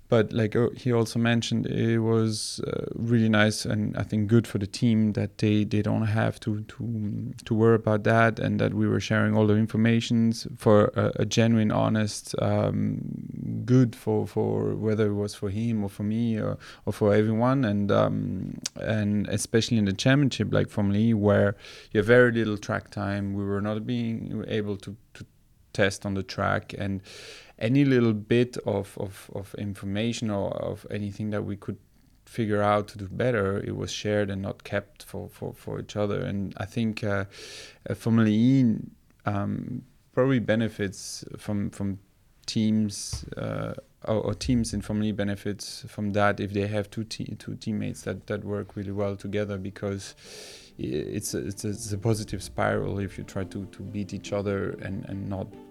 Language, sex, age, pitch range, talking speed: English, male, 30-49, 100-115 Hz, 185 wpm